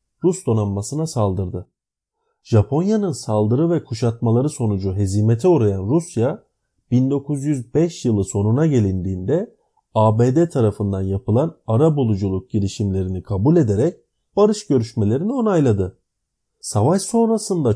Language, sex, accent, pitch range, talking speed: Turkish, male, native, 105-160 Hz, 95 wpm